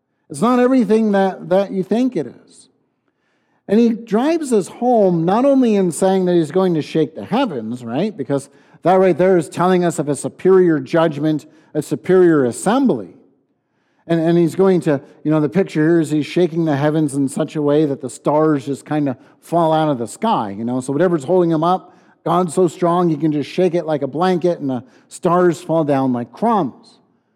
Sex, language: male, English